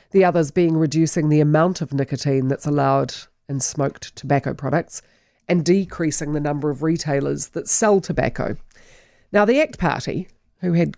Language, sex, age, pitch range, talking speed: English, female, 40-59, 140-170 Hz, 160 wpm